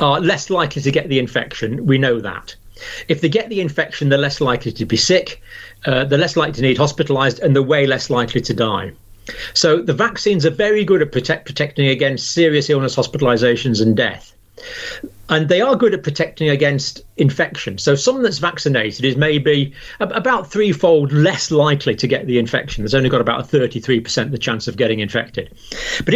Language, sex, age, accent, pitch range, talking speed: English, male, 40-59, British, 125-170 Hz, 195 wpm